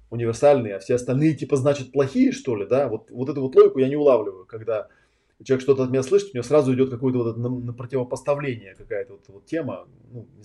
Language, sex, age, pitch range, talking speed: Russian, male, 20-39, 115-140 Hz, 225 wpm